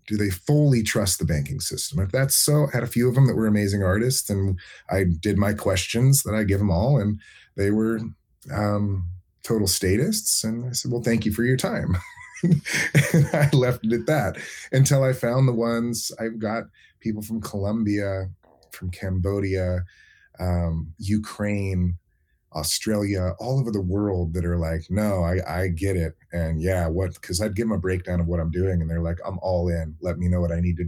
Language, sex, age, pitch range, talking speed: English, male, 30-49, 85-105 Hz, 200 wpm